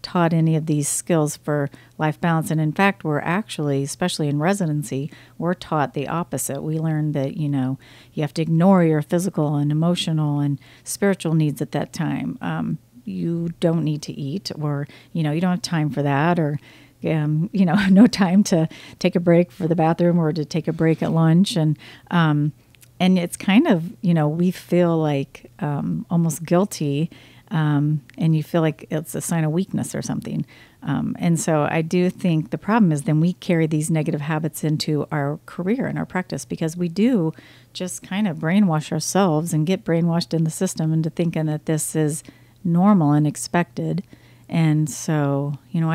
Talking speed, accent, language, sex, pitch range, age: 190 wpm, American, English, female, 150-175 Hz, 40-59